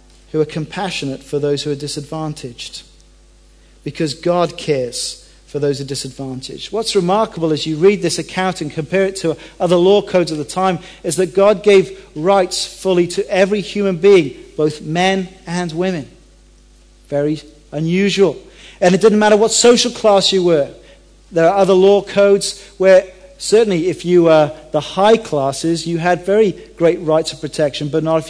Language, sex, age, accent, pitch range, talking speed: English, male, 40-59, British, 155-195 Hz, 170 wpm